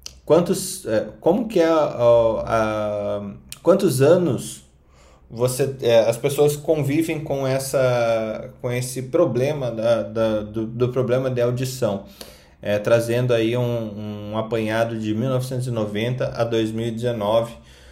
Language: Portuguese